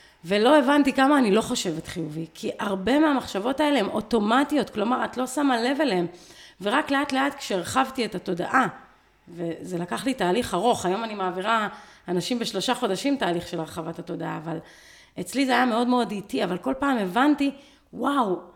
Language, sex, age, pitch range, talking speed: Hebrew, female, 30-49, 195-285 Hz, 170 wpm